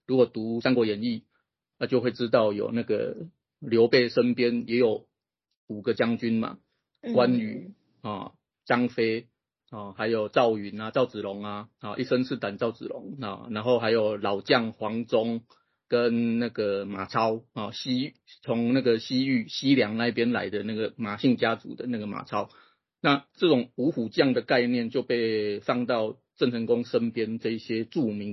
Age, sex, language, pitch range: 30-49, male, Chinese, 110-130 Hz